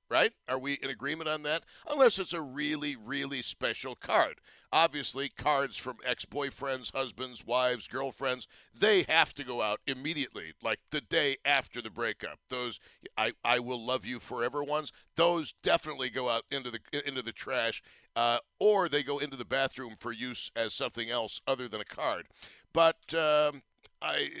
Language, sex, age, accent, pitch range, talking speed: English, male, 60-79, American, 115-145 Hz, 165 wpm